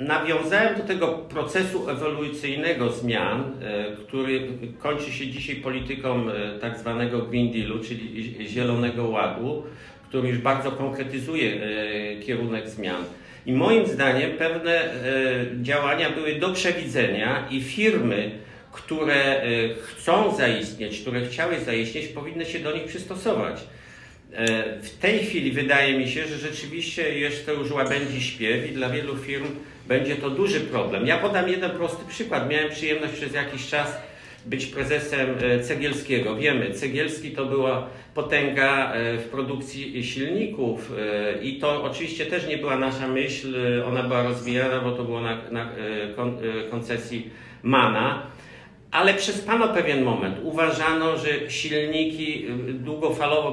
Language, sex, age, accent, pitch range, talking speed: English, male, 50-69, Polish, 120-150 Hz, 125 wpm